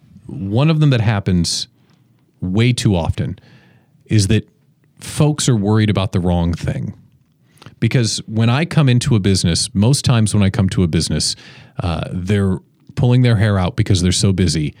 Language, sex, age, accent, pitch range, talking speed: English, male, 40-59, American, 95-135 Hz, 170 wpm